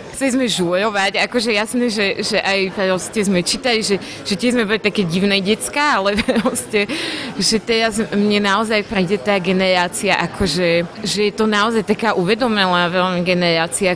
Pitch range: 185-235 Hz